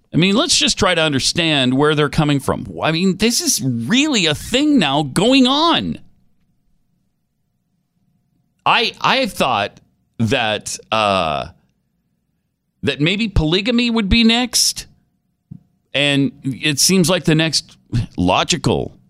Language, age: English, 40-59